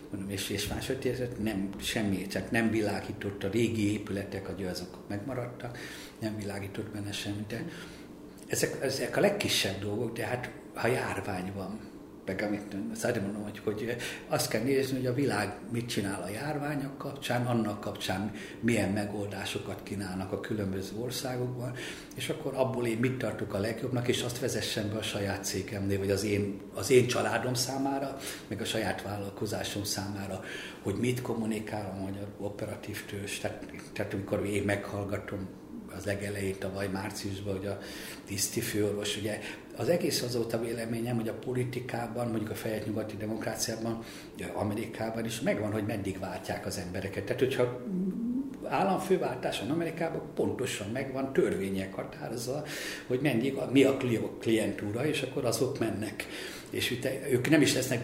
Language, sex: Hungarian, male